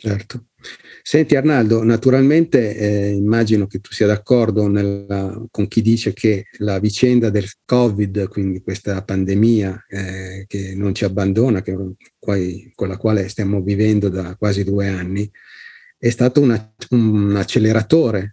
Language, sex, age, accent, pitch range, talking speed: Italian, male, 40-59, native, 100-115 Hz, 130 wpm